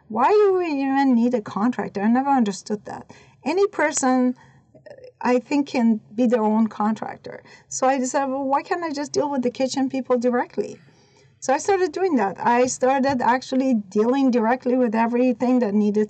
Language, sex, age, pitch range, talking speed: English, female, 40-59, 215-260 Hz, 180 wpm